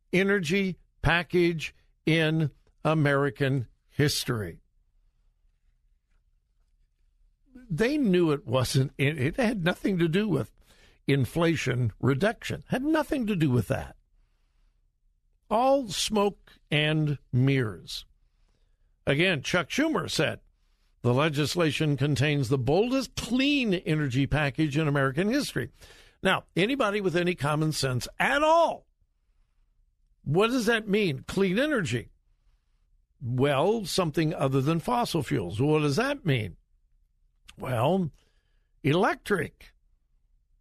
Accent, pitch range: American, 120-185 Hz